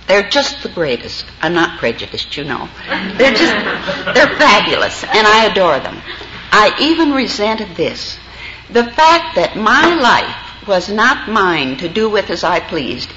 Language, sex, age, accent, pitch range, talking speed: English, female, 60-79, American, 160-225 Hz, 160 wpm